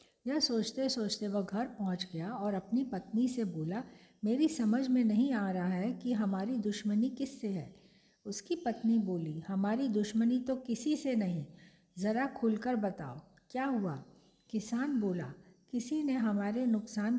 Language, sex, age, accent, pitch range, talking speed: Hindi, female, 50-69, native, 185-240 Hz, 155 wpm